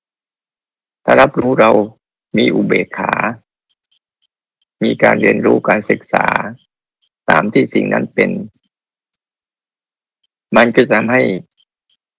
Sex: male